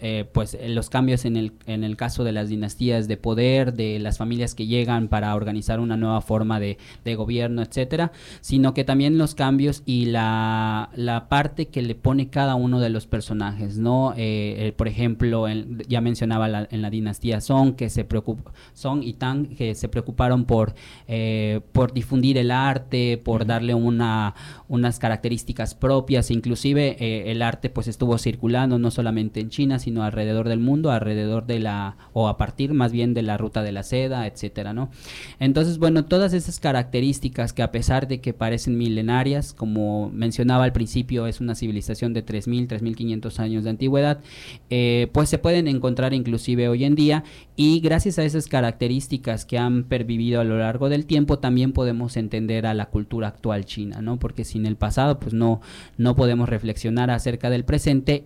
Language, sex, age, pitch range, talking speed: Spanish, male, 30-49, 110-130 Hz, 185 wpm